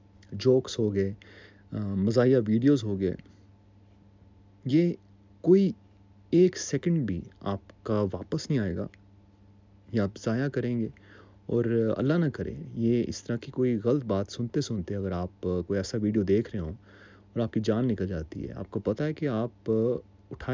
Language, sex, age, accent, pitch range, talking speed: French, male, 30-49, Indian, 100-120 Hz, 115 wpm